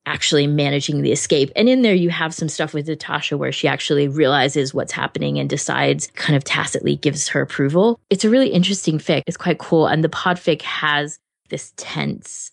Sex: female